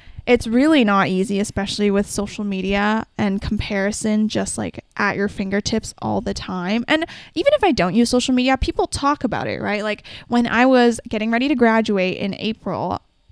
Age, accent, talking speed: 10-29, American, 185 wpm